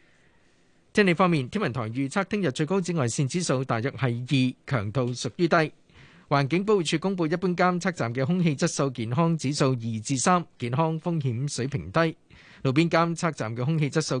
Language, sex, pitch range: Chinese, male, 125-165 Hz